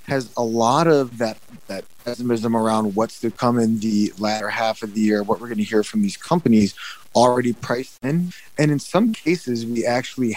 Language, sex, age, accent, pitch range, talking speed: English, male, 30-49, American, 110-130 Hz, 205 wpm